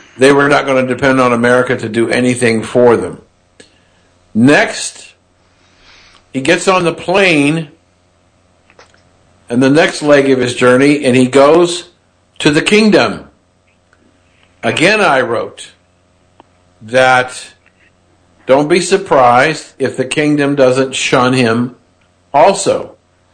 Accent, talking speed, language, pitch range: American, 120 wpm, English, 90-150 Hz